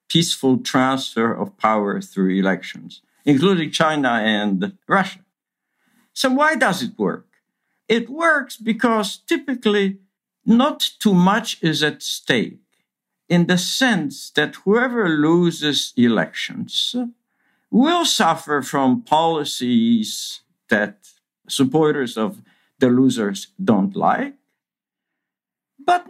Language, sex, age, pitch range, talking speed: English, male, 60-79, 145-245 Hz, 100 wpm